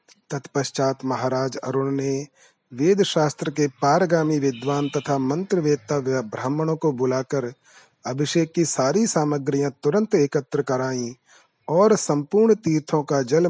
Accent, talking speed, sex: native, 110 wpm, male